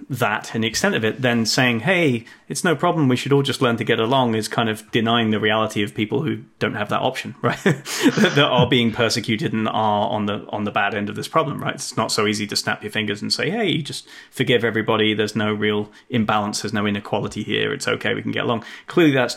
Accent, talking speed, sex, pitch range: British, 250 wpm, male, 110-125 Hz